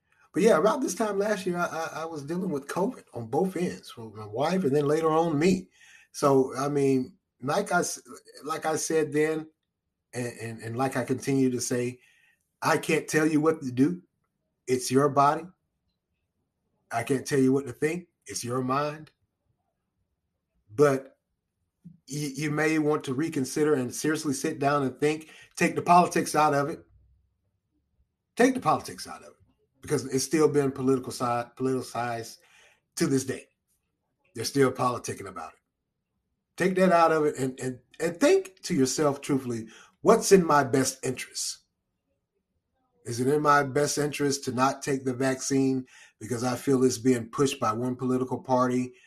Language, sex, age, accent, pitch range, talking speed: English, male, 30-49, American, 125-150 Hz, 170 wpm